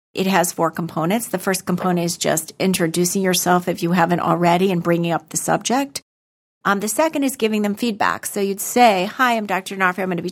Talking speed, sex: 220 wpm, female